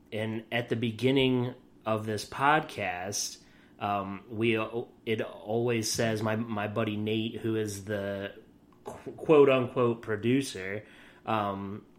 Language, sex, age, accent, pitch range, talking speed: English, male, 30-49, American, 105-125 Hz, 115 wpm